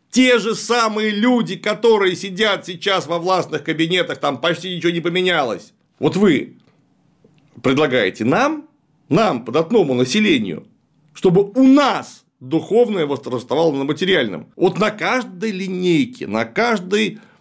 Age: 40-59